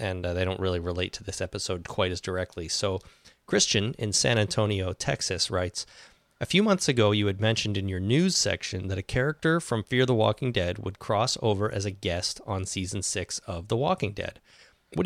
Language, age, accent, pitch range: English, 30-49, American, 95-120 Hz